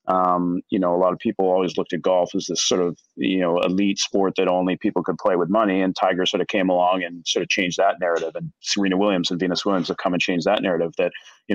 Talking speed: 270 wpm